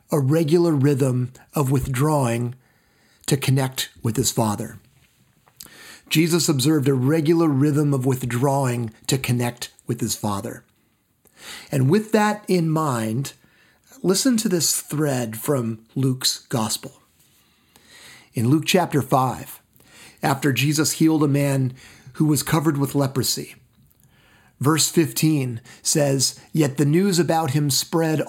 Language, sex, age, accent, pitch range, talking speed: English, male, 40-59, American, 125-155 Hz, 120 wpm